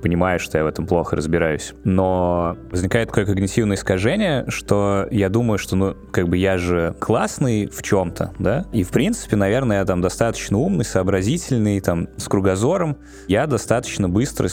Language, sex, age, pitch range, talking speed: Russian, male, 20-39, 90-105 Hz, 170 wpm